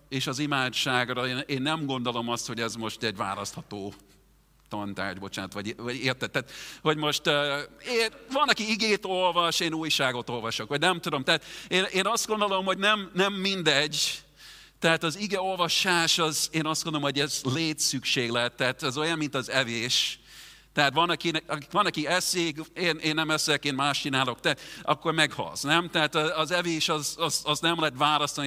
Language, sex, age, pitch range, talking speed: Hungarian, male, 40-59, 125-165 Hz, 175 wpm